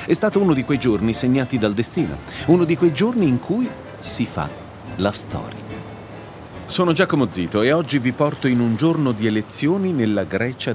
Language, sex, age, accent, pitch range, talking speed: Italian, male, 40-59, native, 95-135 Hz, 185 wpm